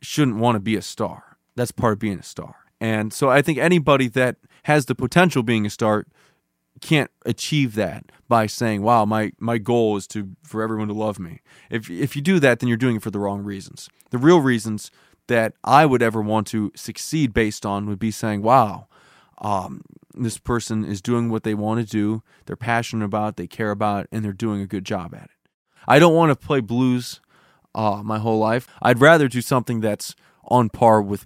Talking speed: 215 wpm